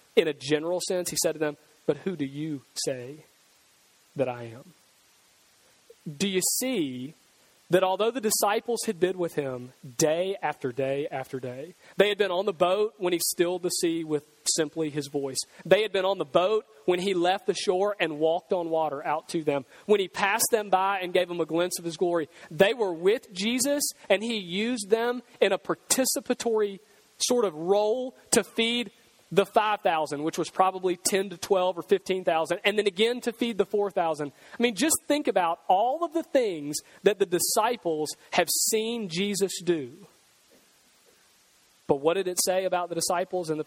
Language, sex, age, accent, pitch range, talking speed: English, male, 30-49, American, 155-205 Hz, 190 wpm